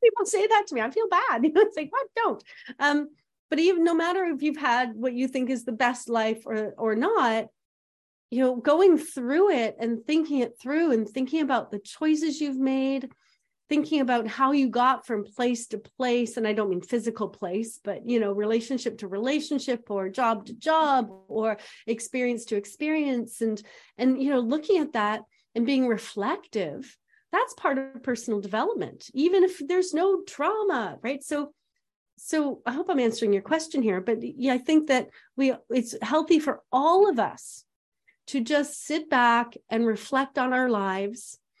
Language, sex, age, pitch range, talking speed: English, female, 30-49, 225-310 Hz, 185 wpm